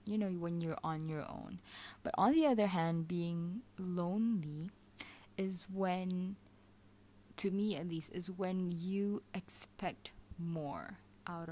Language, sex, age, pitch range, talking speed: English, female, 20-39, 155-185 Hz, 135 wpm